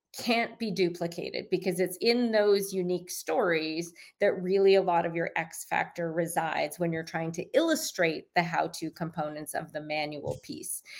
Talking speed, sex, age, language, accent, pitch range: 165 wpm, female, 30-49, English, American, 175-220 Hz